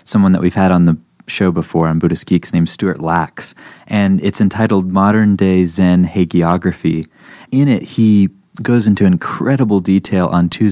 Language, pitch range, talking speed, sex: English, 85-105 Hz, 170 wpm, male